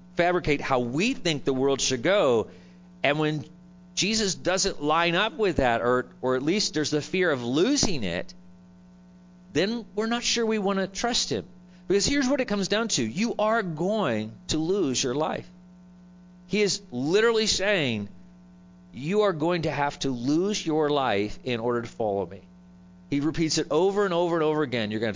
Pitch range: 130-190 Hz